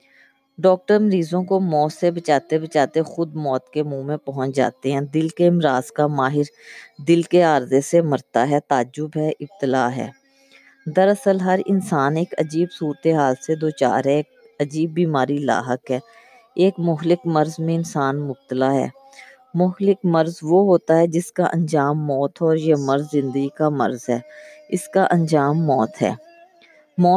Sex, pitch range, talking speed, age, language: female, 140-180 Hz, 165 wpm, 20-39, Urdu